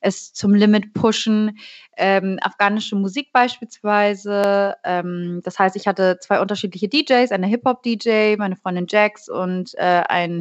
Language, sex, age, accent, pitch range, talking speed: German, female, 20-39, German, 185-220 Hz, 135 wpm